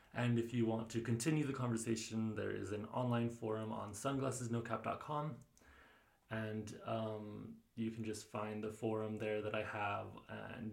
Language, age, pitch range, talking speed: English, 20-39, 110-120 Hz, 155 wpm